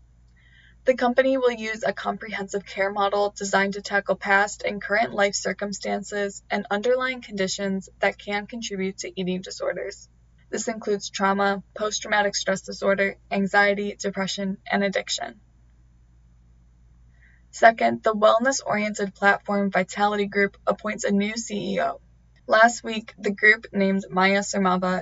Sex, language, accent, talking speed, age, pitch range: female, English, American, 125 wpm, 20-39, 175-205 Hz